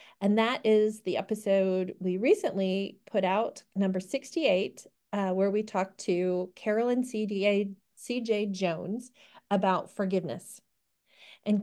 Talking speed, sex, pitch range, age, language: 115 wpm, female, 185-220 Hz, 40-59, English